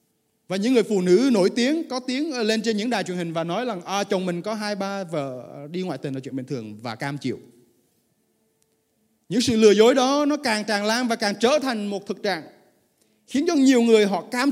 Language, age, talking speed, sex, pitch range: Vietnamese, 20-39, 235 wpm, male, 170-250 Hz